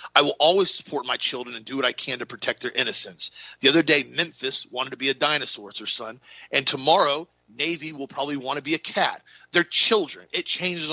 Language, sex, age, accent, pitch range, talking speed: English, male, 40-59, American, 130-170 Hz, 225 wpm